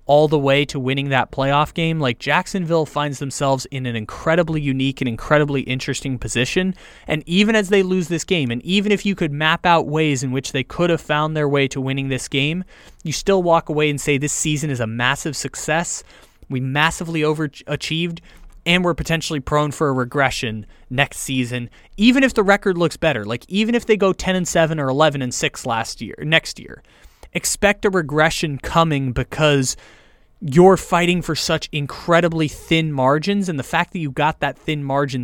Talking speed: 195 wpm